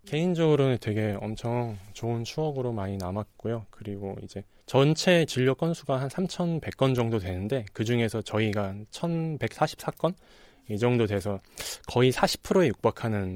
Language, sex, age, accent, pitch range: Korean, male, 20-39, native, 105-145 Hz